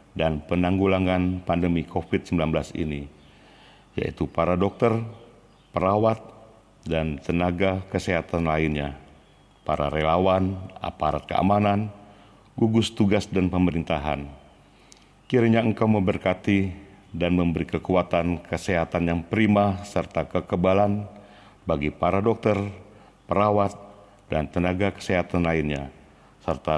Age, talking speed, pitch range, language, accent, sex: 50-69, 90 wpm, 80-100 Hz, Indonesian, native, male